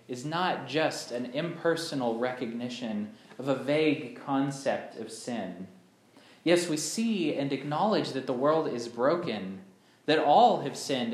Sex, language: male, English